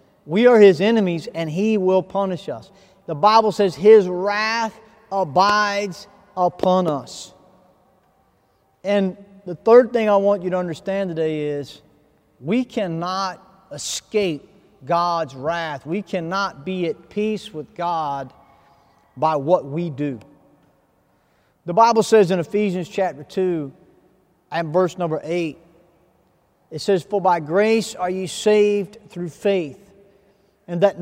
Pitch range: 160-205 Hz